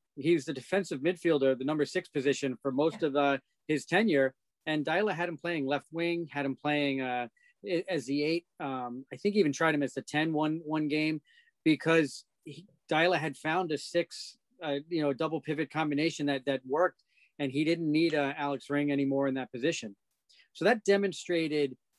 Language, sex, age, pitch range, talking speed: English, male, 40-59, 135-160 Hz, 195 wpm